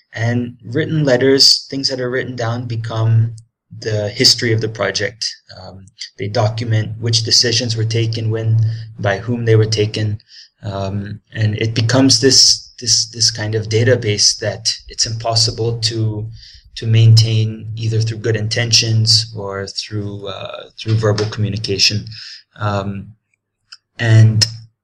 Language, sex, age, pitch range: English, male, 20-39, 105-120 Hz